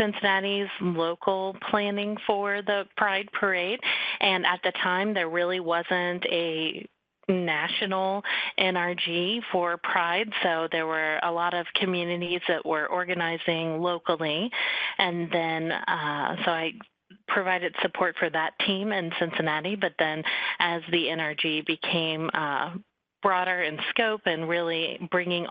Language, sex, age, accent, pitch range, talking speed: English, female, 30-49, American, 160-190 Hz, 125 wpm